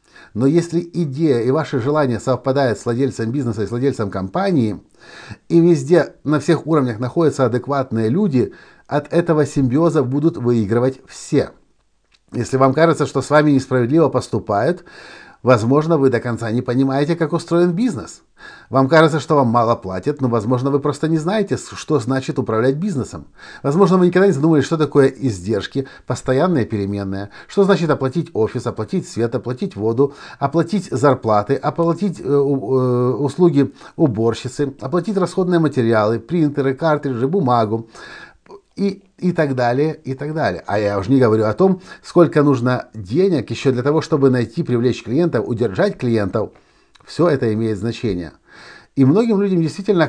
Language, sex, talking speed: Russian, male, 150 wpm